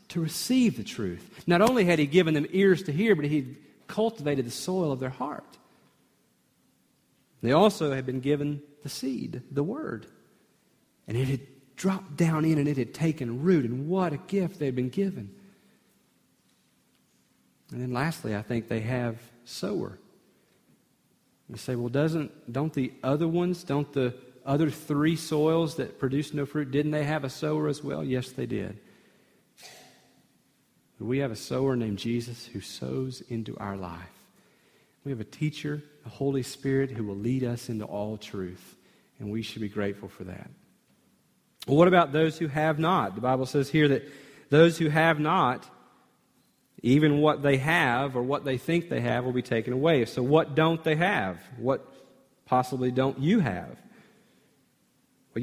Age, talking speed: 40-59, 170 wpm